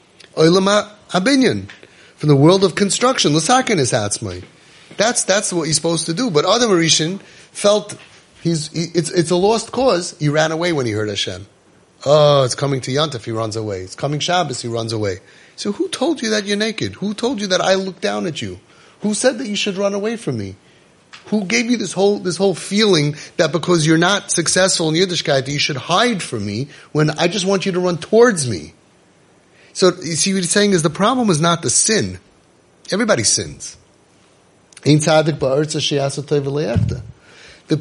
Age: 30-49